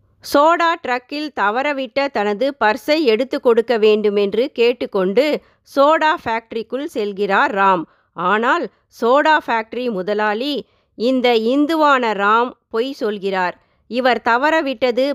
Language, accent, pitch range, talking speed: Tamil, native, 215-290 Hz, 95 wpm